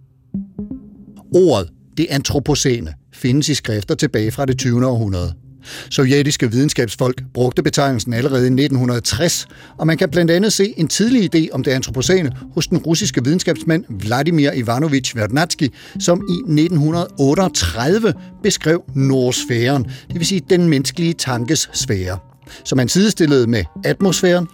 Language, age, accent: Danish, 60-79, native